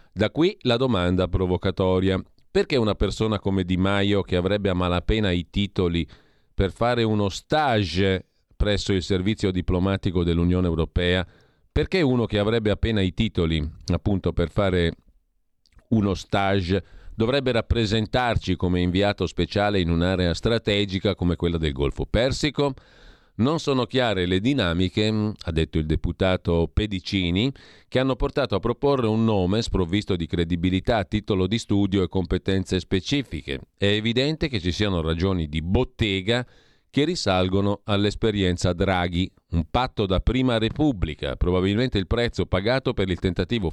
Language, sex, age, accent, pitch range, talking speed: Italian, male, 40-59, native, 90-110 Hz, 140 wpm